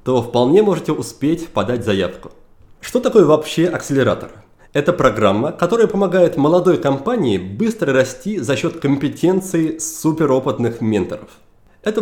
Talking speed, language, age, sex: 120 wpm, Russian, 30-49, male